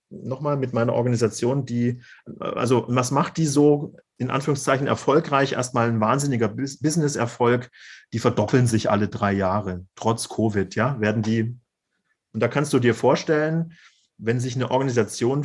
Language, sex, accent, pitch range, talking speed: English, male, German, 120-150 Hz, 150 wpm